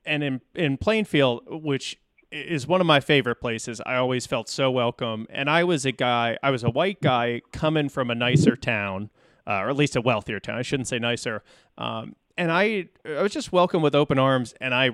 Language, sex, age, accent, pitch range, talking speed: English, male, 30-49, American, 110-145 Hz, 215 wpm